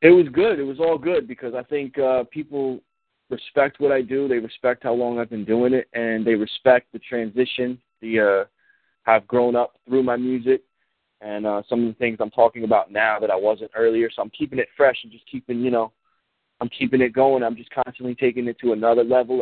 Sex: male